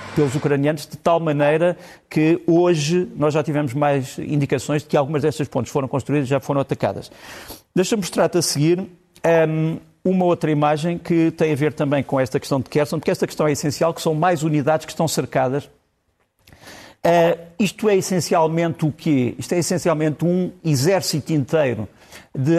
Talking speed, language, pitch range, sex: 175 wpm, Portuguese, 135-165 Hz, male